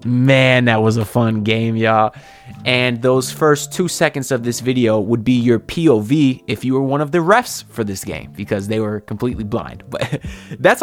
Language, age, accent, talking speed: English, 20-39, American, 200 wpm